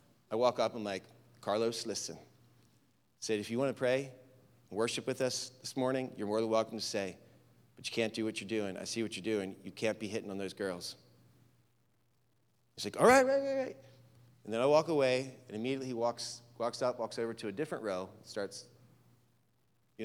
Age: 30-49